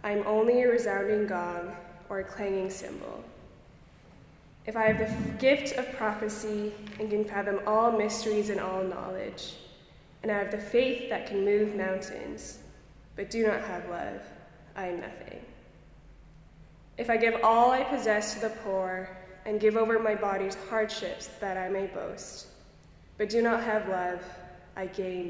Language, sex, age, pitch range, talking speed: English, female, 20-39, 190-225 Hz, 160 wpm